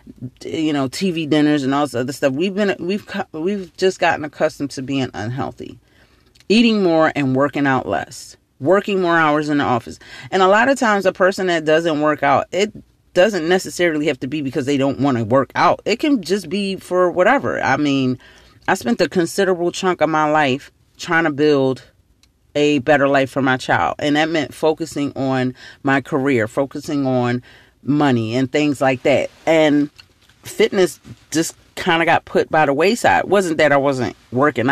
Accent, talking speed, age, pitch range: American, 190 wpm, 30-49, 130-165 Hz